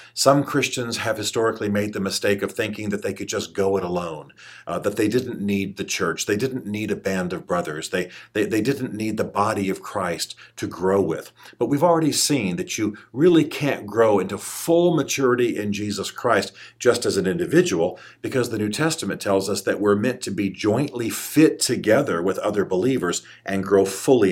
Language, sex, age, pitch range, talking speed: English, male, 50-69, 100-135 Hz, 200 wpm